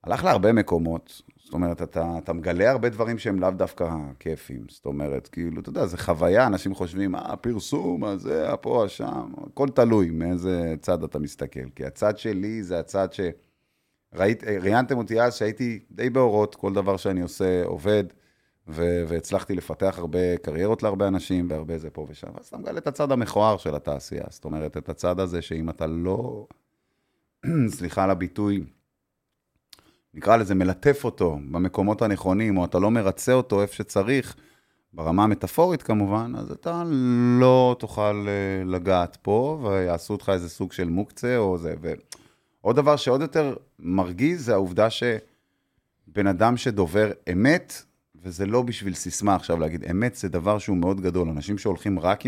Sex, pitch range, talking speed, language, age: male, 90-120 Hz, 145 wpm, Hebrew, 30-49